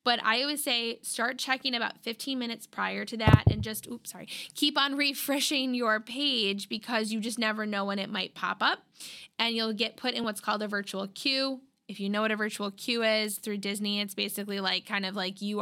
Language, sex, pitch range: English, female, 200-235 Hz